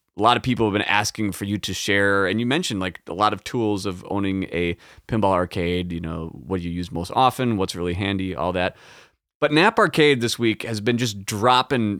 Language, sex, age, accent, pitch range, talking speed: English, male, 30-49, American, 95-130 Hz, 230 wpm